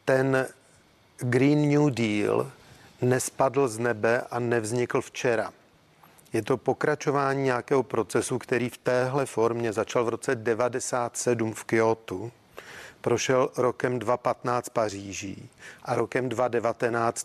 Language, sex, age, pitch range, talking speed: Czech, male, 40-59, 115-140 Hz, 110 wpm